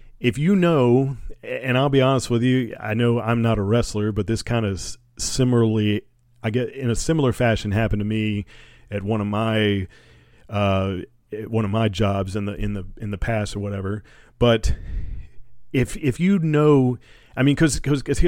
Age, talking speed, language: 40-59, 180 wpm, English